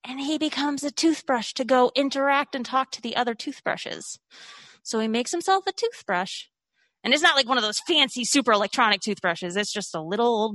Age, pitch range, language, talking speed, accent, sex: 20-39, 205-295 Hz, English, 205 wpm, American, female